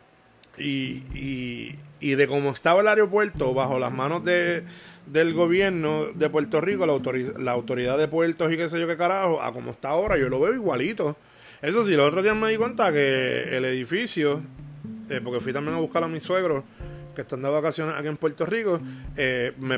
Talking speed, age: 205 wpm, 30-49